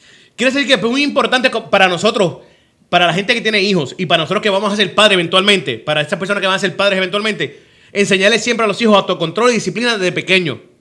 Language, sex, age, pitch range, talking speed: Spanish, male, 30-49, 150-210 Hz, 235 wpm